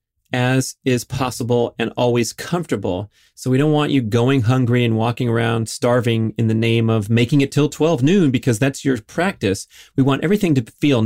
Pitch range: 110-125 Hz